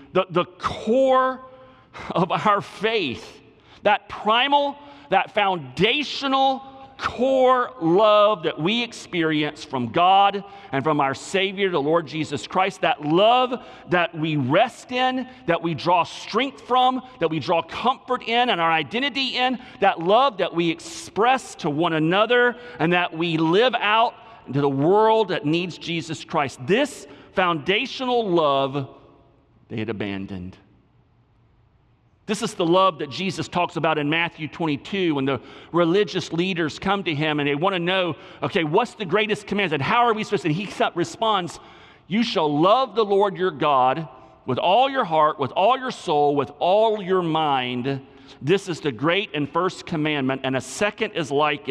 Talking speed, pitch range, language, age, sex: 160 wpm, 150-215 Hz, English, 40-59, male